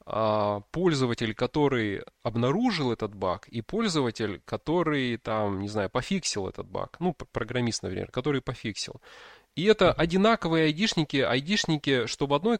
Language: Russian